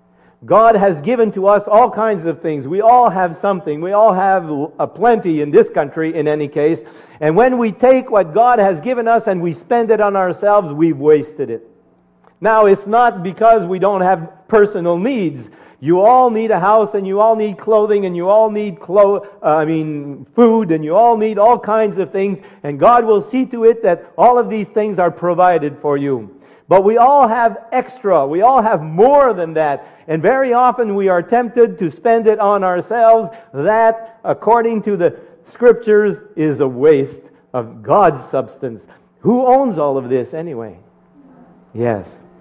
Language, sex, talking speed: English, male, 185 wpm